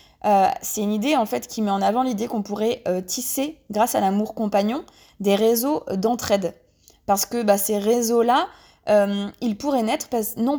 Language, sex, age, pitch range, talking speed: French, female, 20-39, 195-250 Hz, 185 wpm